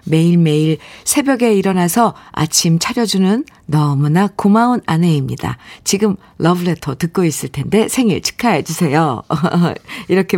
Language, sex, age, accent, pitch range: Korean, female, 50-69, native, 155-210 Hz